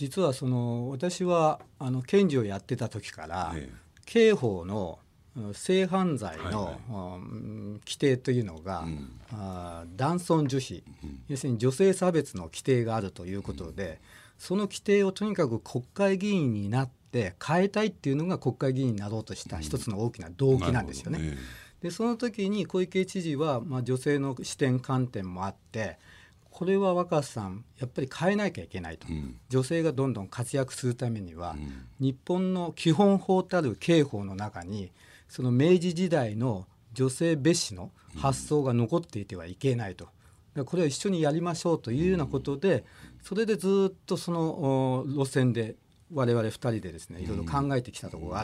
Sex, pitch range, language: male, 100-160 Hz, Japanese